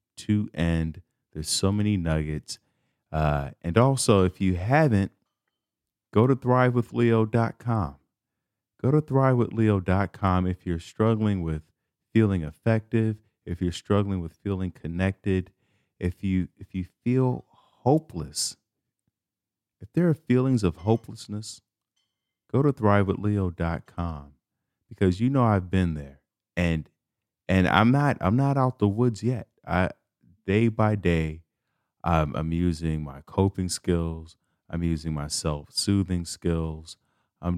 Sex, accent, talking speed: male, American, 120 wpm